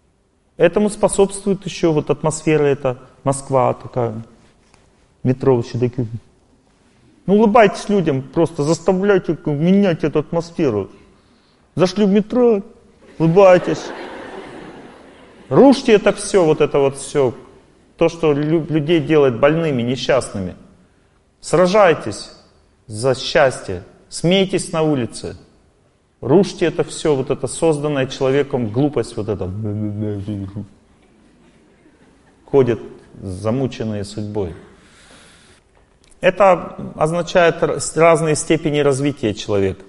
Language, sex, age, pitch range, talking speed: Russian, male, 30-49, 125-180 Hz, 90 wpm